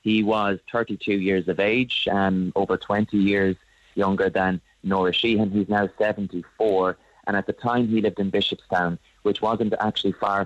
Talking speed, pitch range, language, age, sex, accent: 170 wpm, 95-105 Hz, English, 30-49, male, Irish